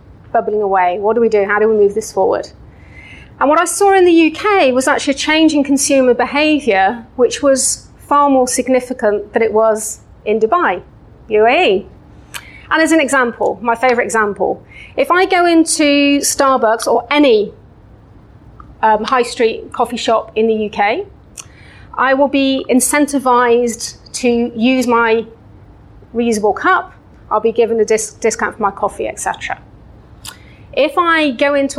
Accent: British